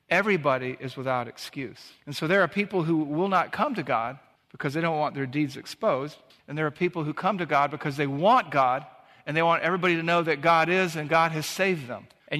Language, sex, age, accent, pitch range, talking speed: English, male, 50-69, American, 150-185 Hz, 235 wpm